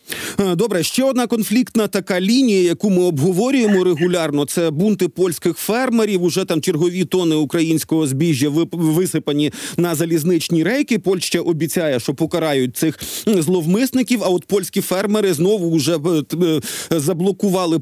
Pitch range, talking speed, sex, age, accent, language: 160-195 Hz, 130 wpm, male, 40-59, native, Ukrainian